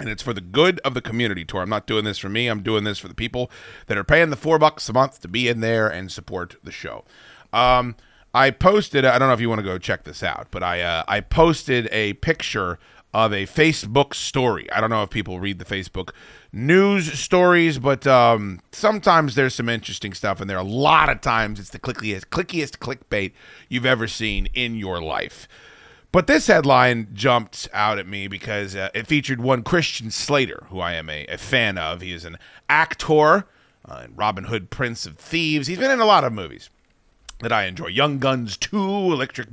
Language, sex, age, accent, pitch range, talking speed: English, male, 30-49, American, 100-145 Hz, 215 wpm